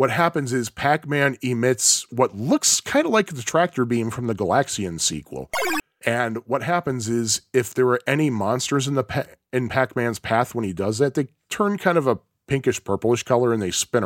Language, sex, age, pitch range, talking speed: English, male, 40-59, 115-150 Hz, 200 wpm